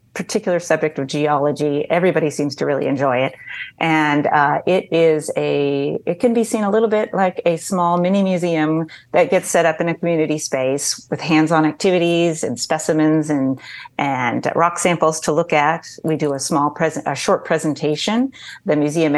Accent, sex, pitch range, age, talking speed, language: American, female, 145-170 Hz, 40-59, 180 wpm, English